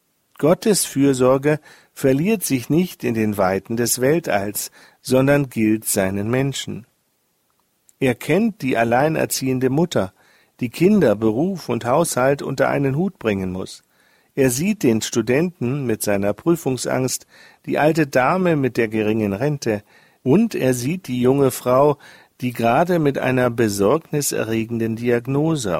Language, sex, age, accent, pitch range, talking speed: German, male, 50-69, German, 115-155 Hz, 130 wpm